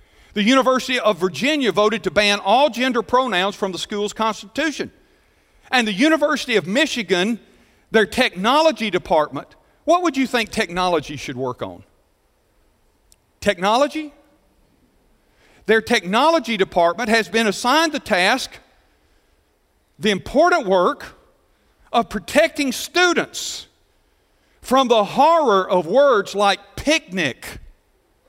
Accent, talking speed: American, 110 wpm